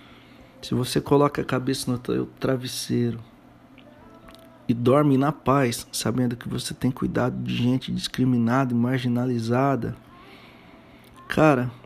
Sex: male